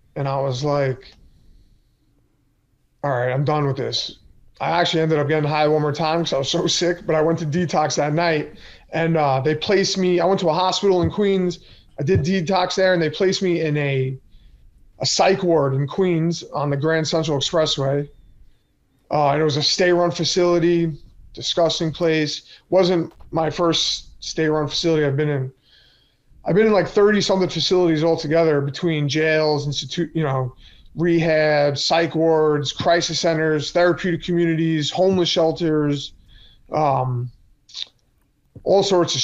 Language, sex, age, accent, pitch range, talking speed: English, male, 20-39, American, 145-175 Hz, 160 wpm